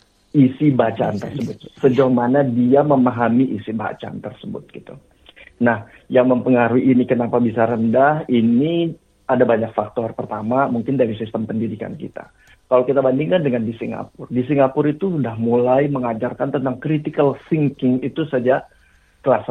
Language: Indonesian